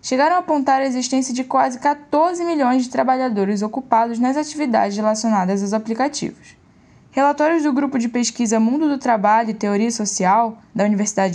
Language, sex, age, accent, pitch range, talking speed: Portuguese, female, 10-29, Brazilian, 215-280 Hz, 160 wpm